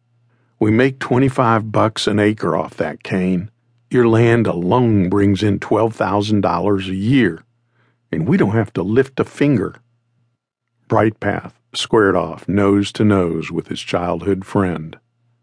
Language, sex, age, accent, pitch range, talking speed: English, male, 50-69, American, 95-120 Hz, 135 wpm